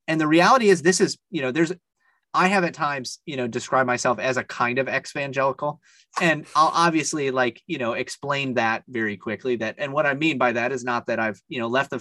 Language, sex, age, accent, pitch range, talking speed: English, male, 30-49, American, 130-180 Hz, 240 wpm